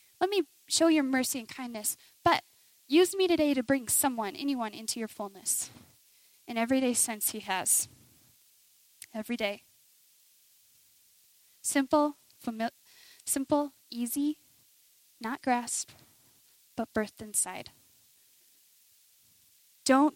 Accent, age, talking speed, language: American, 10-29, 105 wpm, English